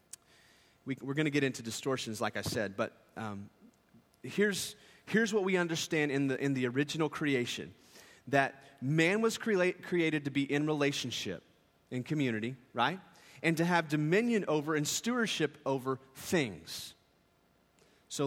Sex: male